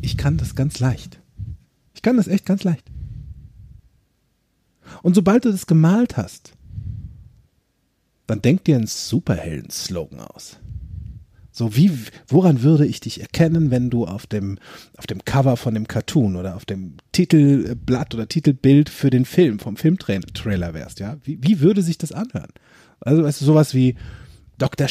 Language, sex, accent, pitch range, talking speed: German, male, German, 105-175 Hz, 160 wpm